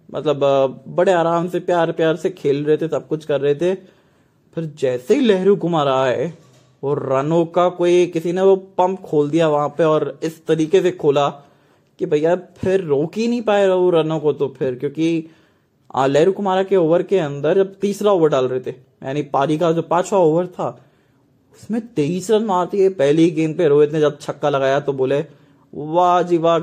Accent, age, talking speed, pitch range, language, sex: Indian, 20-39, 150 wpm, 145-180 Hz, English, male